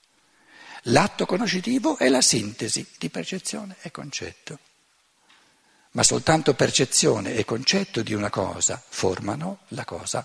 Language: Italian